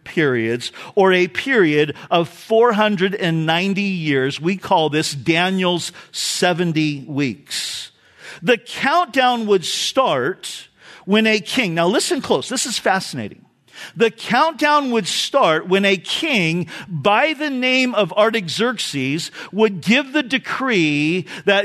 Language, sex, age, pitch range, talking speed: English, male, 50-69, 175-245 Hz, 120 wpm